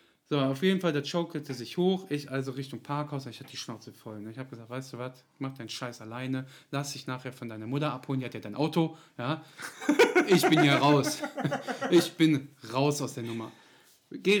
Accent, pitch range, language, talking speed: German, 135-210 Hz, German, 215 wpm